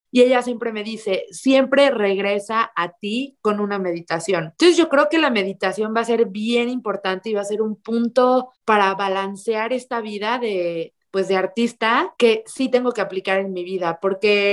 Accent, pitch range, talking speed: Mexican, 195-240 Hz, 190 wpm